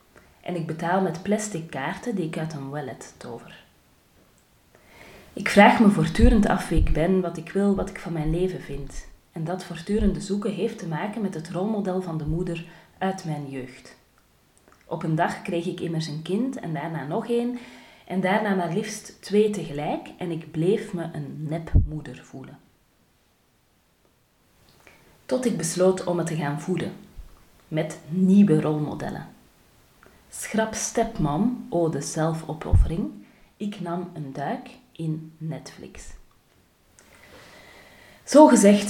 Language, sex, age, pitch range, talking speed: Dutch, female, 30-49, 160-205 Hz, 145 wpm